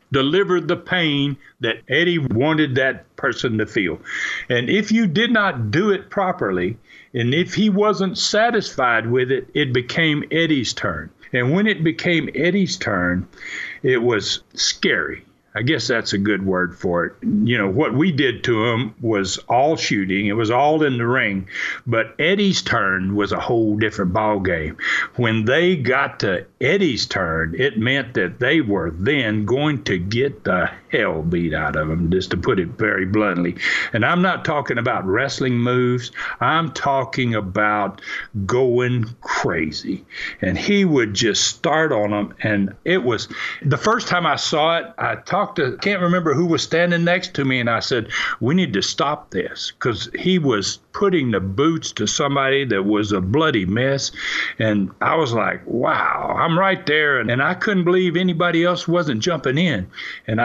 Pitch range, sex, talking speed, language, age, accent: 105-175 Hz, male, 175 wpm, English, 60-79, American